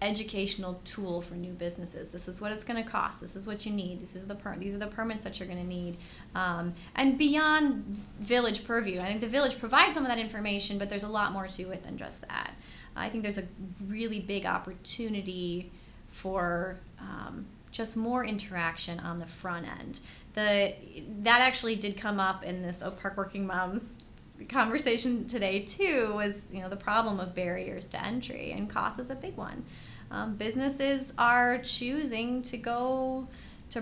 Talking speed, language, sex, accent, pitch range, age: 190 wpm, English, female, American, 190-230 Hz, 20-39